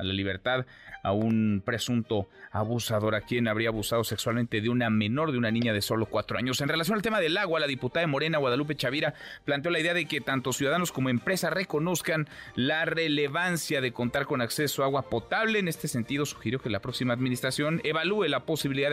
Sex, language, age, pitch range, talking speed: male, Spanish, 30-49, 120-155 Hz, 205 wpm